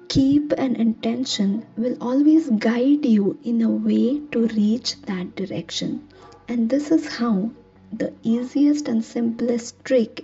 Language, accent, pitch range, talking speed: English, Indian, 205-255 Hz, 135 wpm